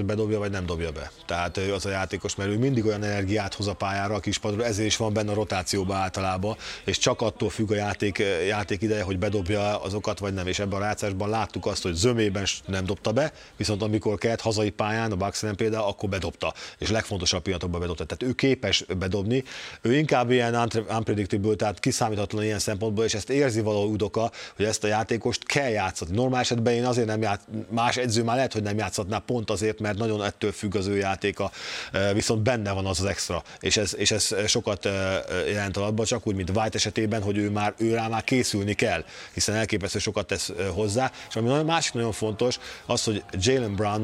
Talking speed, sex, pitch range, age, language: 205 wpm, male, 100-110 Hz, 30-49, Hungarian